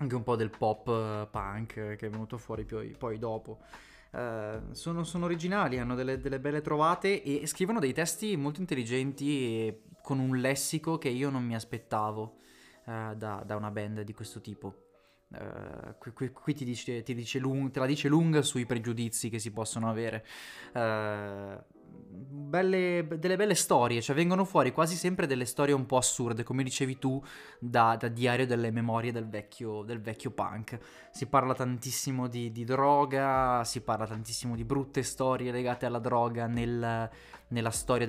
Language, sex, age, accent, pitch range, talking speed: Italian, male, 20-39, native, 110-135 Hz, 150 wpm